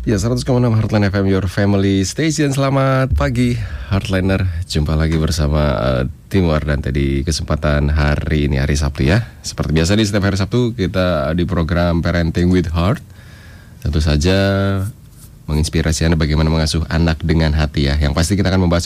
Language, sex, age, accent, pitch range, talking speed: English, male, 30-49, Indonesian, 75-100 Hz, 160 wpm